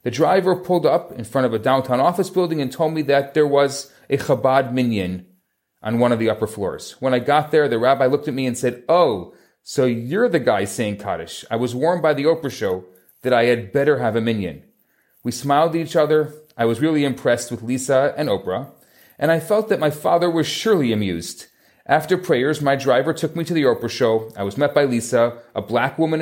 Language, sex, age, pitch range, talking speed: English, male, 30-49, 115-160 Hz, 225 wpm